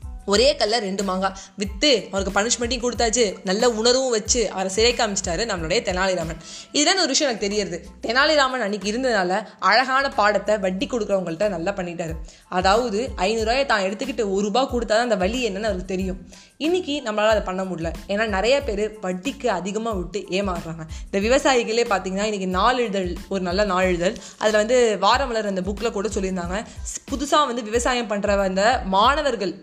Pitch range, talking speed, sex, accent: 195-240 Hz, 160 wpm, female, native